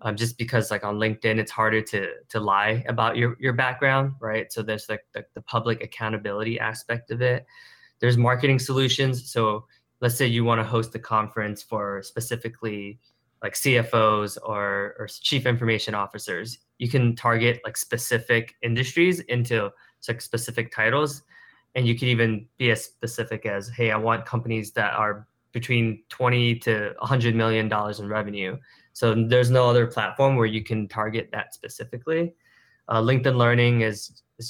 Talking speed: 165 wpm